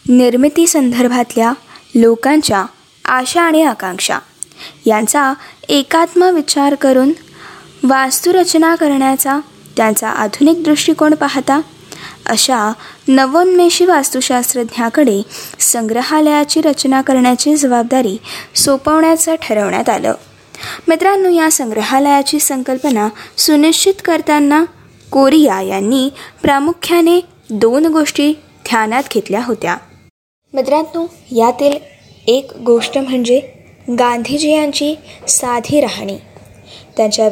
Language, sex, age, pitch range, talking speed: Marathi, female, 20-39, 230-300 Hz, 80 wpm